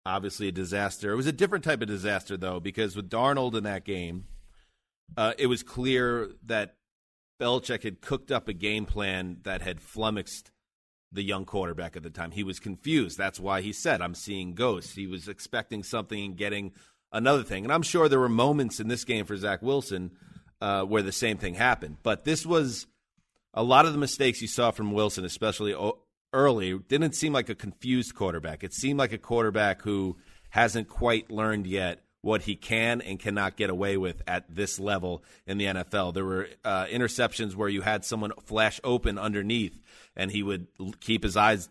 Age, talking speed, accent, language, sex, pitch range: 30-49, 195 wpm, American, English, male, 95-115 Hz